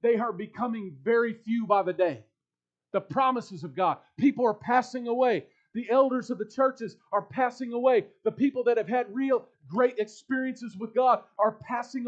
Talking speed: 180 wpm